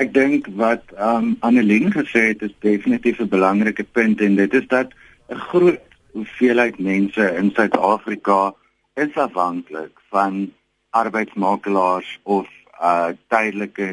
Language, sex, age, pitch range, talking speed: Dutch, male, 60-79, 95-120 Hz, 120 wpm